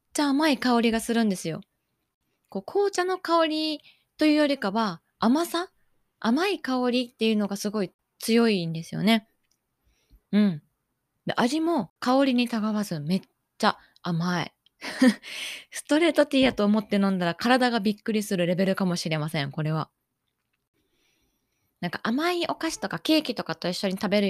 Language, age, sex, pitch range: Japanese, 20-39, female, 185-265 Hz